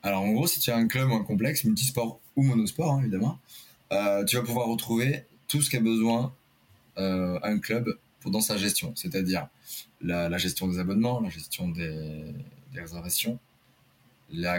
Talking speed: 175 wpm